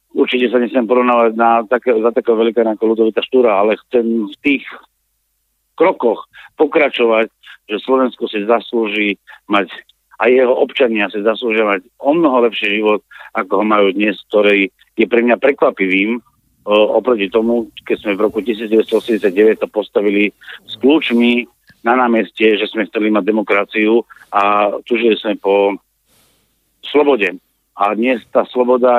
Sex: male